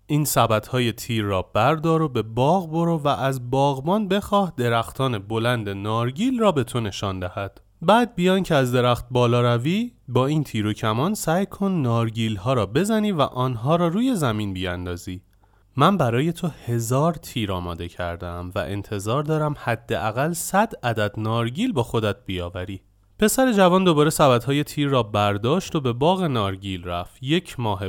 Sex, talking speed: male, 165 wpm